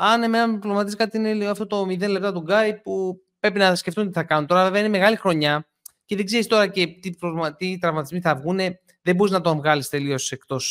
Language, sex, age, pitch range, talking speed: Greek, male, 20-39, 150-195 Hz, 230 wpm